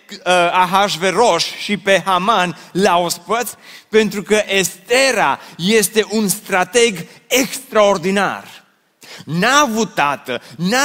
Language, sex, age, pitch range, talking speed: Romanian, male, 30-49, 185-235 Hz, 95 wpm